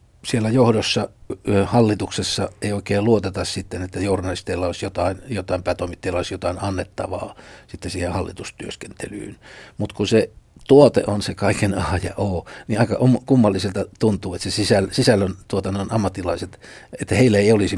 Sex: male